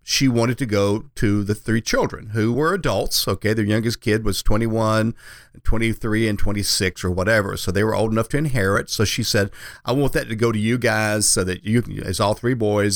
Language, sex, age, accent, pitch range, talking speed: English, male, 50-69, American, 100-125 Hz, 220 wpm